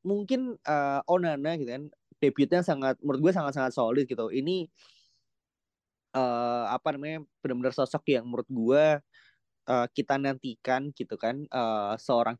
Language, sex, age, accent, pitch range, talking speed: Indonesian, male, 20-39, native, 120-160 Hz, 135 wpm